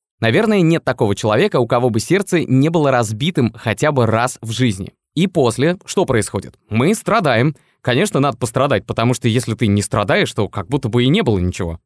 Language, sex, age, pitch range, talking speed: Russian, male, 20-39, 115-160 Hz, 195 wpm